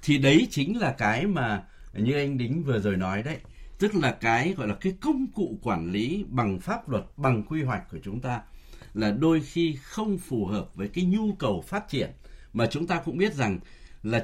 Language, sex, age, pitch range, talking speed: Vietnamese, male, 60-79, 110-180 Hz, 215 wpm